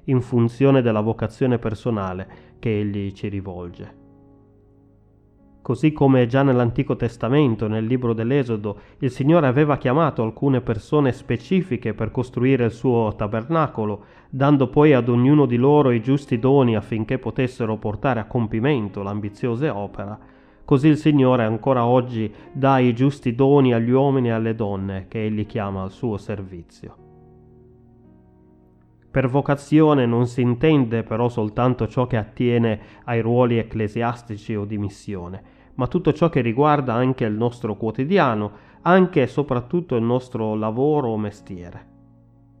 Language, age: Italian, 30-49